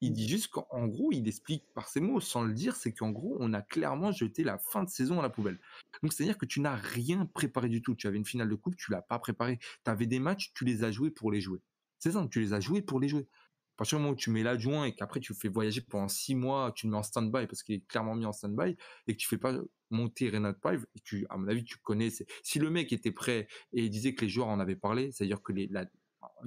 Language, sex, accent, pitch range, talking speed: French, male, French, 105-130 Hz, 290 wpm